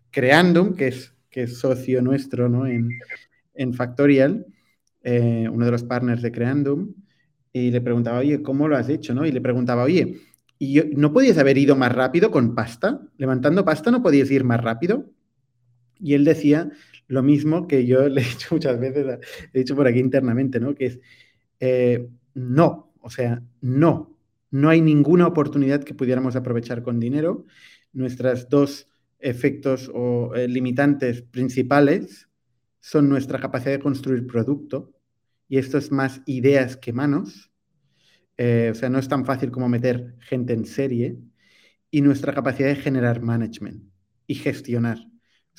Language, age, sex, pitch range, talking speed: Spanish, 30-49, male, 120-145 Hz, 160 wpm